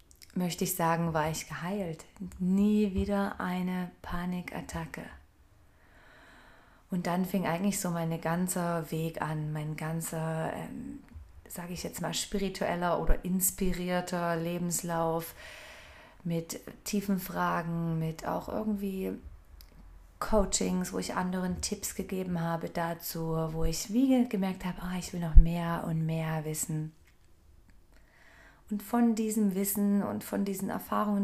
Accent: German